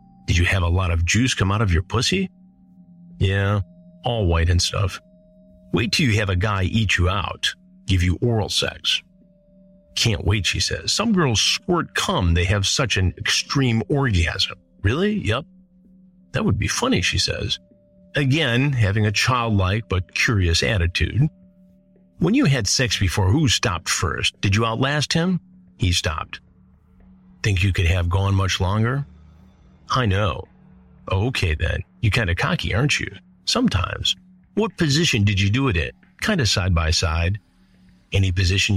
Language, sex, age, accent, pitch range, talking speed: English, male, 50-69, American, 90-130 Hz, 165 wpm